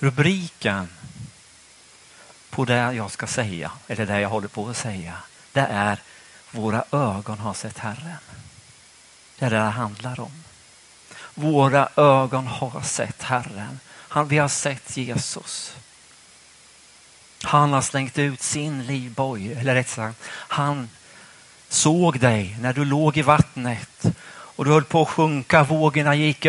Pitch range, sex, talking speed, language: 110-145 Hz, male, 135 wpm, Swedish